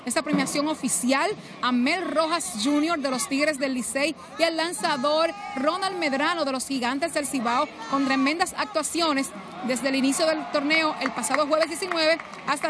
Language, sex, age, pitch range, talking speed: Spanish, female, 30-49, 270-325 Hz, 165 wpm